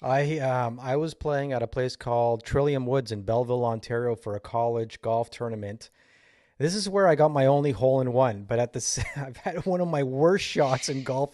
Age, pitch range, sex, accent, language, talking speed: 30-49, 120-150 Hz, male, American, English, 215 wpm